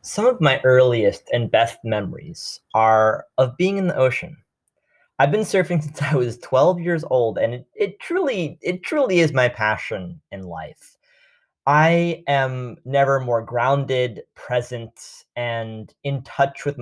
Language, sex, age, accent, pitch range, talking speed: English, male, 20-39, American, 120-170 Hz, 155 wpm